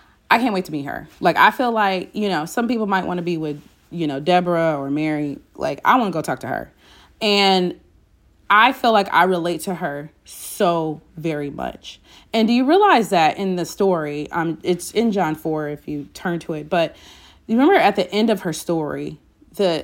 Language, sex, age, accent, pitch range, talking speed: English, female, 30-49, American, 160-220 Hz, 215 wpm